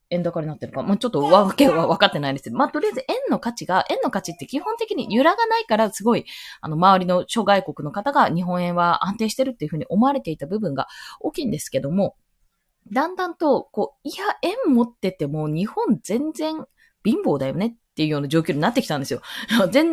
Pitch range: 180-290 Hz